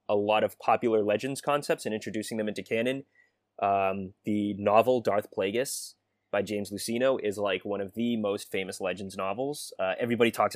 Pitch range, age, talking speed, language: 100-125 Hz, 20-39, 175 wpm, English